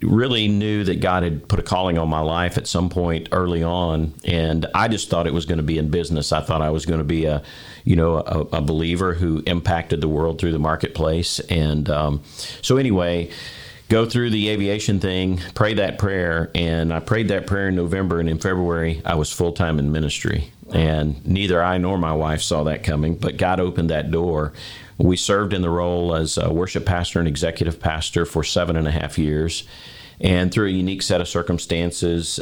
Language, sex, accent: English, male, American